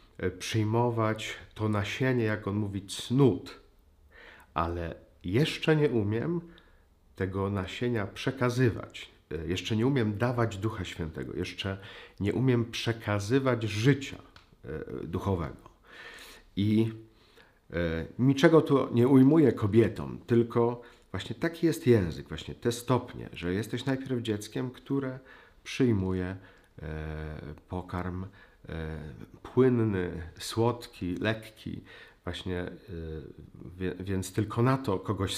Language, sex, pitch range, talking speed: Polish, male, 90-120 Hz, 95 wpm